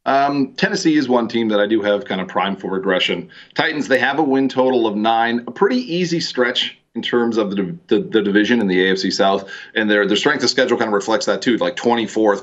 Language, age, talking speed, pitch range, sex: English, 30-49, 235 wpm, 105-130 Hz, male